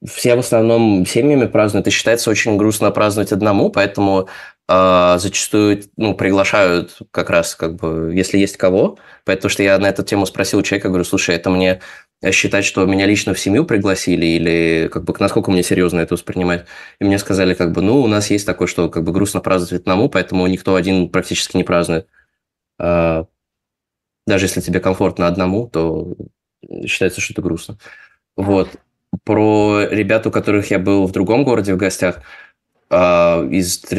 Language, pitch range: Russian, 90-100 Hz